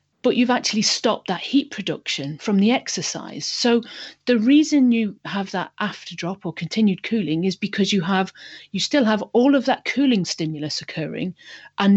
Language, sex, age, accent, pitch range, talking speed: English, female, 40-59, British, 170-220 Hz, 175 wpm